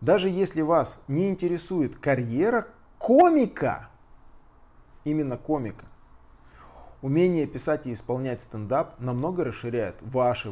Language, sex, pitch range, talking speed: Russian, male, 115-150 Hz, 95 wpm